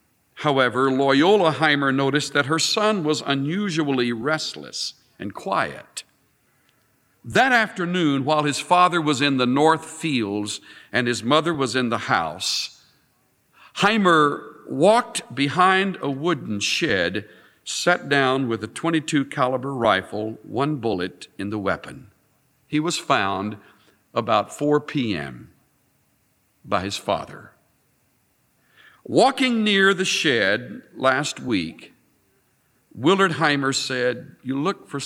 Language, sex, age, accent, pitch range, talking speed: English, male, 60-79, American, 115-160 Hz, 115 wpm